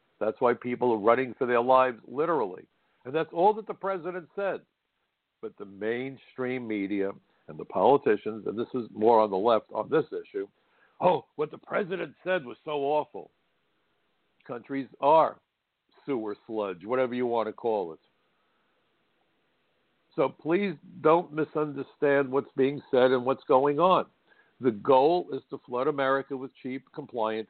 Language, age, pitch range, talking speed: English, 60-79, 110-150 Hz, 155 wpm